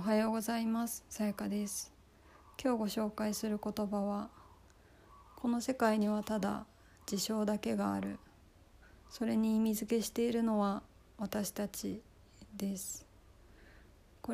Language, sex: Japanese, female